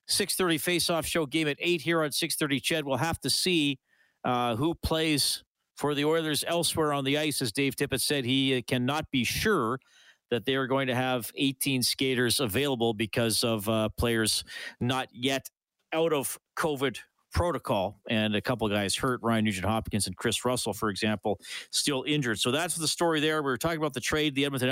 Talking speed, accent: 190 wpm, American